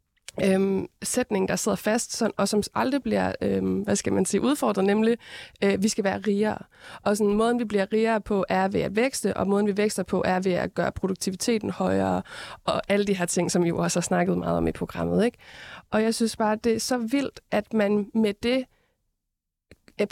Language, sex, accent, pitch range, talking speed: Danish, female, native, 195-230 Hz, 215 wpm